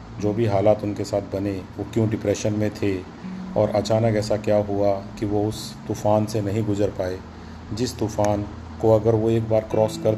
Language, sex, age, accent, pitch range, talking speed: Hindi, male, 40-59, native, 100-115 Hz, 195 wpm